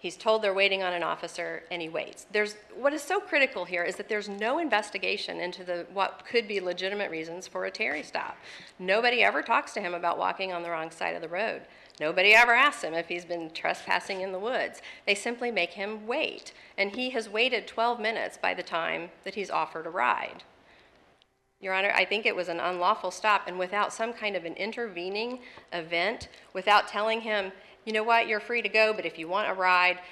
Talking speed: 215 wpm